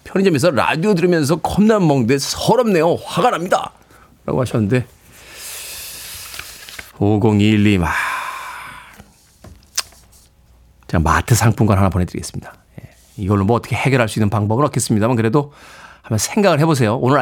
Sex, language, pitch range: male, Korean, 100-140 Hz